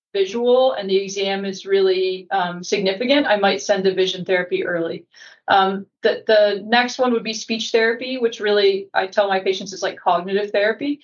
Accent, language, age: American, English, 30-49